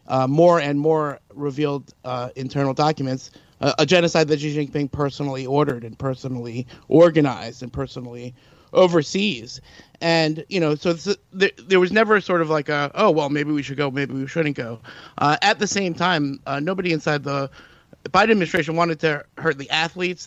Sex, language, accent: male, English, American